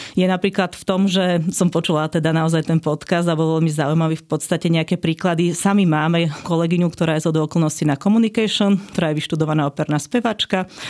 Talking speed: 185 wpm